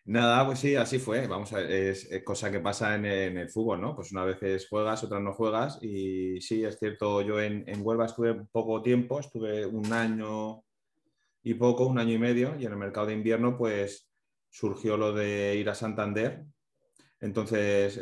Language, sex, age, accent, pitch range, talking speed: Spanish, male, 30-49, Spanish, 95-110 Hz, 195 wpm